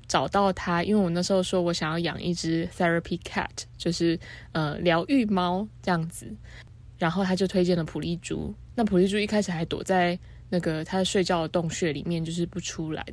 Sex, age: female, 20-39